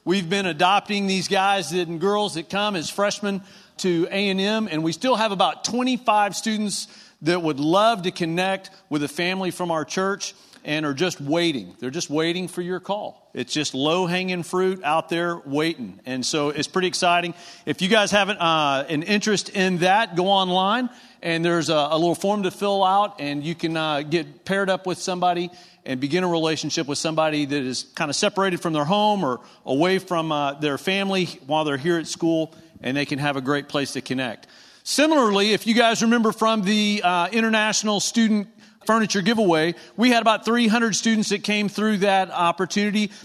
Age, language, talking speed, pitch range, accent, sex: 40-59, English, 195 wpm, 160-205 Hz, American, male